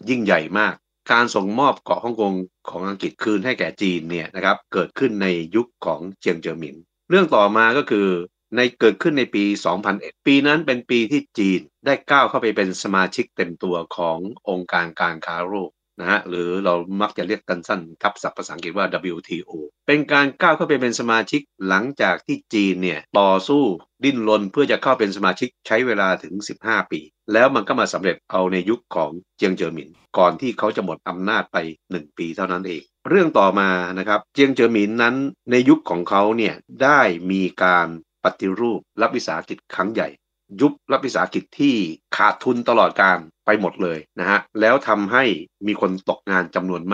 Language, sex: Thai, male